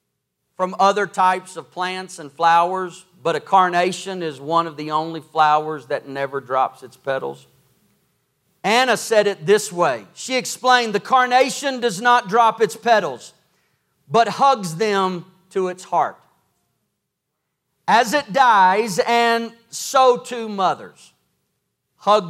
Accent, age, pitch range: American, 40-59, 140-195 Hz